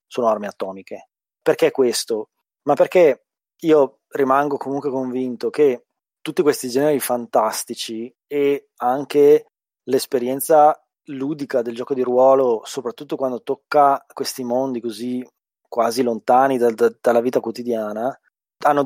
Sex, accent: male, native